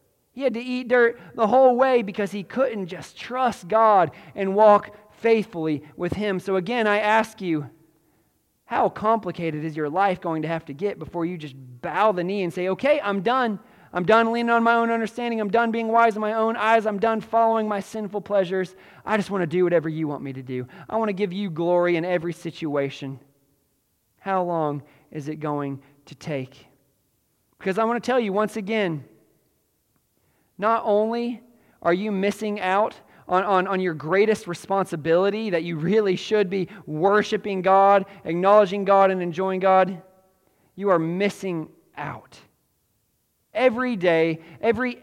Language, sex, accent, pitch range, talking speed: English, male, American, 160-215 Hz, 175 wpm